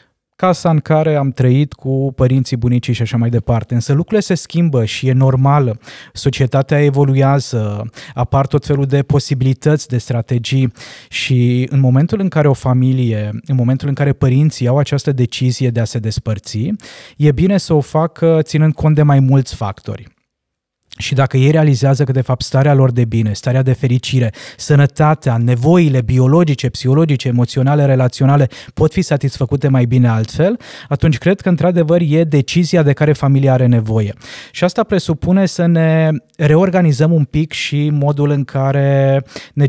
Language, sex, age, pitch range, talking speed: Romanian, male, 20-39, 125-155 Hz, 165 wpm